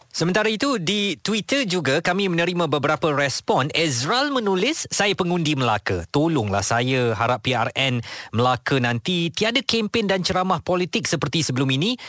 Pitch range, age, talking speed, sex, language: 125-175 Hz, 20-39, 140 wpm, male, Malay